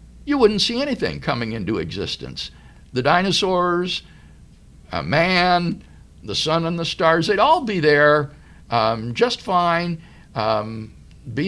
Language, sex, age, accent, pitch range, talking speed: English, male, 60-79, American, 120-175 Hz, 130 wpm